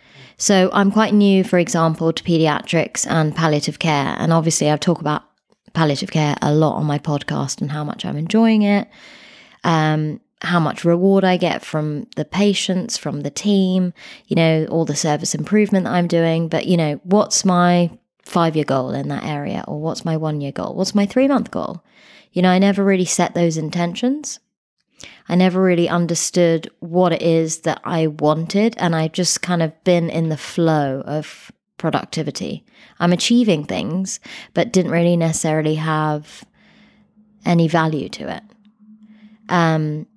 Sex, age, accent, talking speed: female, 20-39, British, 165 wpm